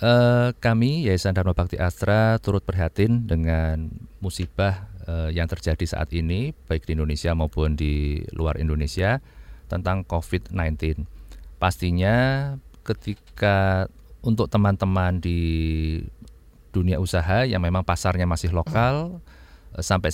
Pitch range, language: 80-105 Hz, Indonesian